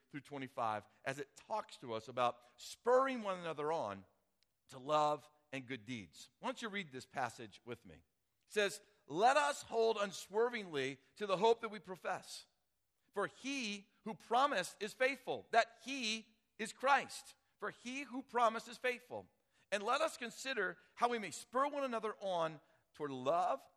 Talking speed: 165 wpm